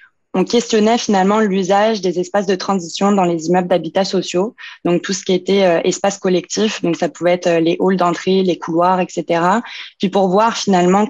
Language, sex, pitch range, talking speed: French, female, 175-200 Hz, 185 wpm